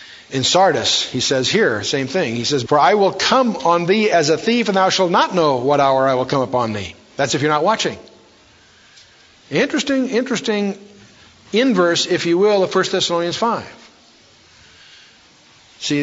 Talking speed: 170 wpm